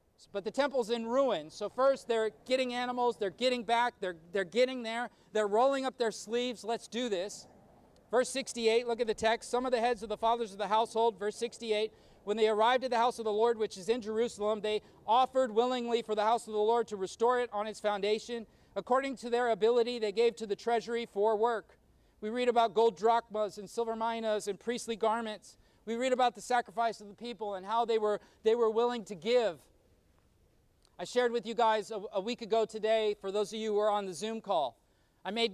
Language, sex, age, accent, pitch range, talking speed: English, male, 40-59, American, 210-235 Hz, 220 wpm